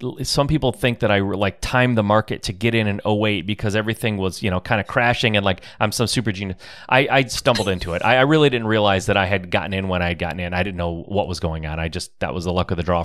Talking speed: 290 wpm